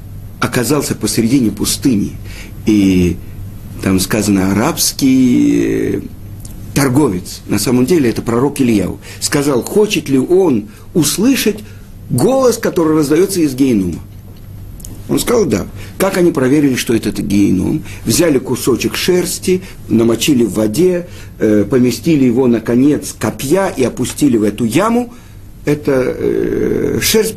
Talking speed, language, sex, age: 110 wpm, Russian, male, 50-69